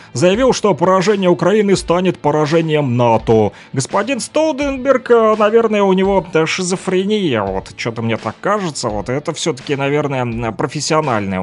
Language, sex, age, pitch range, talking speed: Russian, male, 30-49, 145-220 Hz, 120 wpm